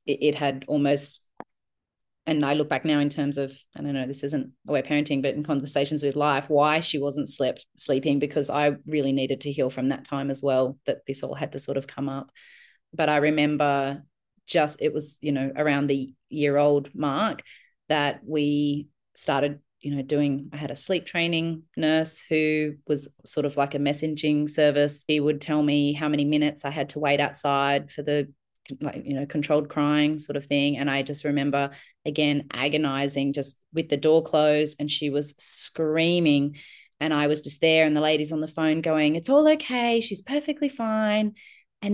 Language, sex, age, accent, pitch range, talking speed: English, female, 30-49, Australian, 145-165 Hz, 195 wpm